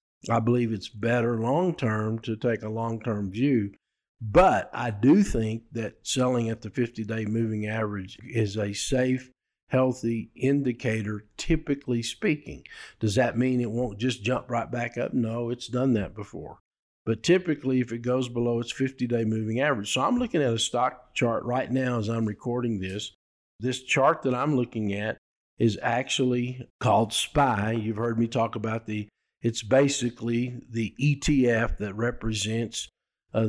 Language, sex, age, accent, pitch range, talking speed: English, male, 50-69, American, 110-125 Hz, 160 wpm